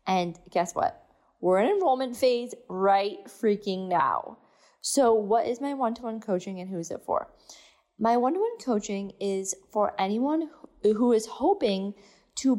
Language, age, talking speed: English, 20-39, 150 wpm